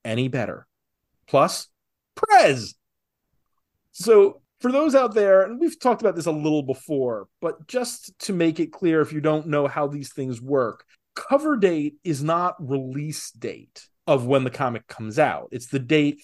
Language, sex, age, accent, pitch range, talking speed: English, male, 30-49, American, 135-185 Hz, 170 wpm